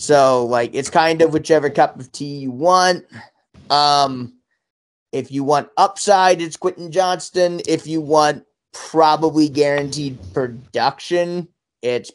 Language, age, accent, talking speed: English, 30-49, American, 130 wpm